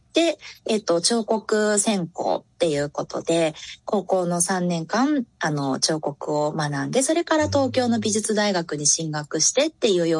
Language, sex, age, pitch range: Japanese, female, 20-39, 165-240 Hz